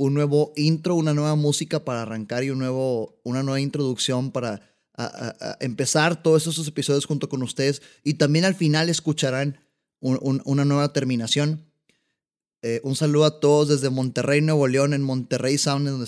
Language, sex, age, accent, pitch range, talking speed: Spanish, male, 20-39, Mexican, 130-170 Hz, 180 wpm